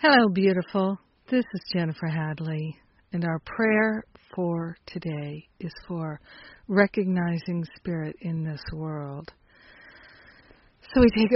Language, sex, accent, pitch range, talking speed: English, female, American, 165-190 Hz, 110 wpm